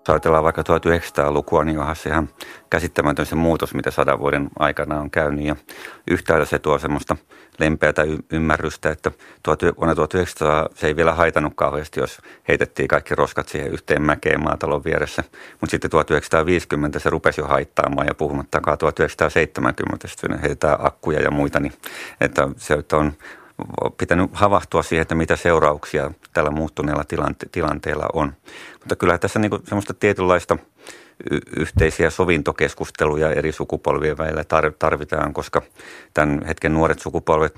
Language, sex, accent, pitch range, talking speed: Finnish, male, native, 75-80 Hz, 140 wpm